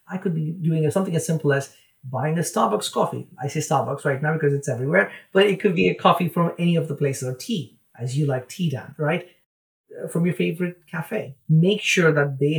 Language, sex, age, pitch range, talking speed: English, male, 30-49, 135-170 Hz, 225 wpm